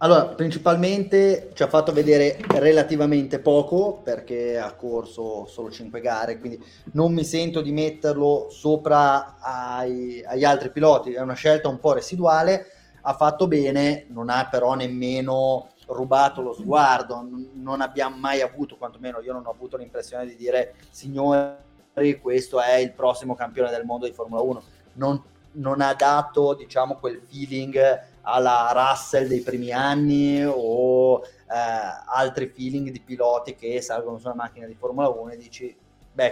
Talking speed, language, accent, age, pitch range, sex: 155 wpm, Italian, native, 30-49, 120-145 Hz, male